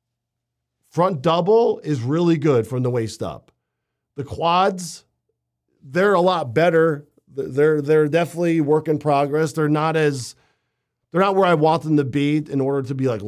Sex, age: male, 40-59